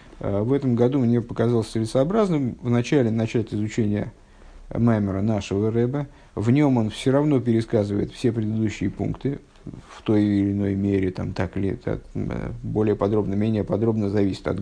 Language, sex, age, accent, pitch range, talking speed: Russian, male, 50-69, native, 100-130 Hz, 150 wpm